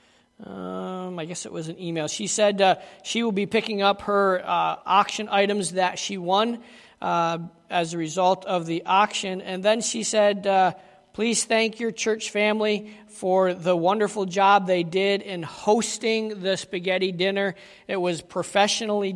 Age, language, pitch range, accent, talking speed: 40-59, English, 180-200 Hz, American, 165 wpm